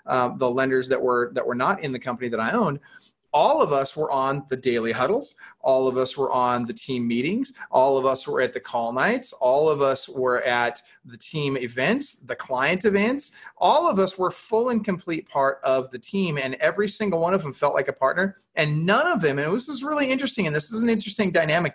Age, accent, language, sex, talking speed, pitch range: 30-49, American, English, male, 235 wpm, 135-210 Hz